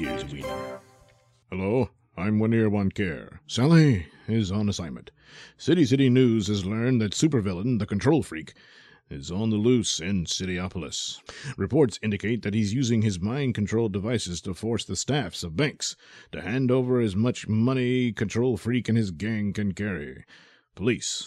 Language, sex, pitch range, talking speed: English, male, 100-125 Hz, 150 wpm